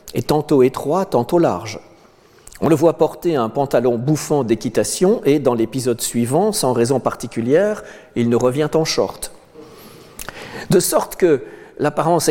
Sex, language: male, French